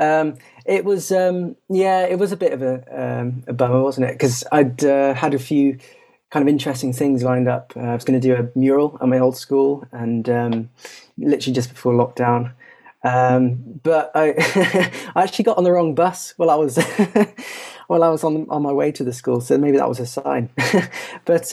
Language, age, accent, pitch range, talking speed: English, 20-39, British, 125-165 Hz, 210 wpm